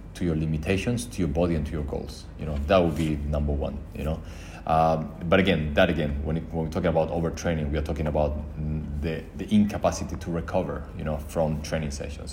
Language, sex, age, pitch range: Chinese, male, 30-49, 75-90 Hz